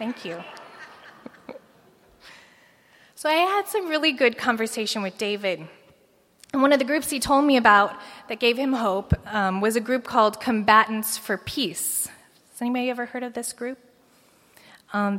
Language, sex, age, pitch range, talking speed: English, female, 20-39, 185-245 Hz, 160 wpm